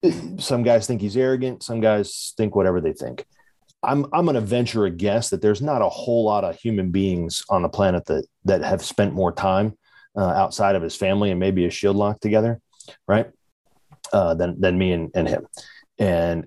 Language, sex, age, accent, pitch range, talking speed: English, male, 30-49, American, 95-125 Hz, 205 wpm